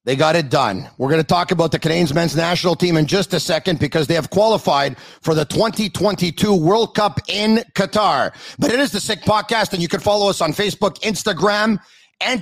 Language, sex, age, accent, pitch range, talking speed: English, male, 40-59, American, 175-225 Hz, 215 wpm